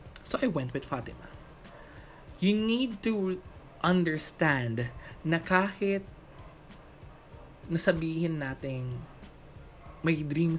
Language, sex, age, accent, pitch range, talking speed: Filipino, male, 20-39, native, 135-185 Hz, 85 wpm